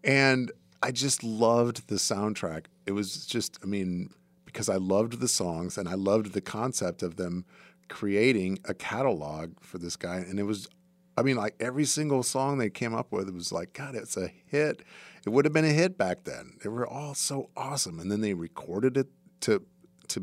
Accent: American